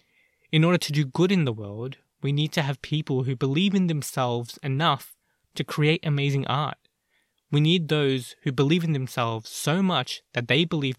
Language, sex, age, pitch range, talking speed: English, male, 20-39, 125-155 Hz, 185 wpm